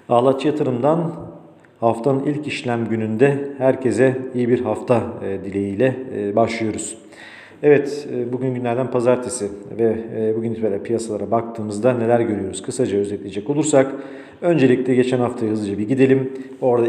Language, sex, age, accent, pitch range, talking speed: Turkish, male, 40-59, native, 115-135 Hz, 115 wpm